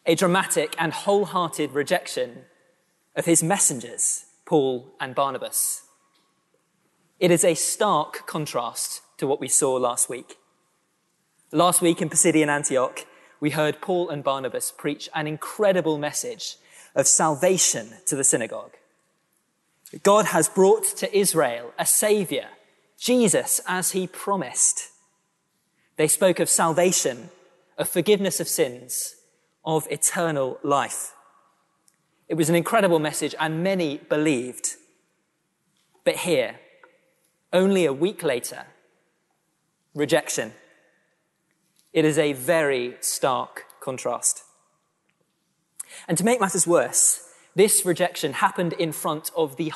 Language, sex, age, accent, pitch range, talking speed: English, male, 20-39, British, 160-200 Hz, 115 wpm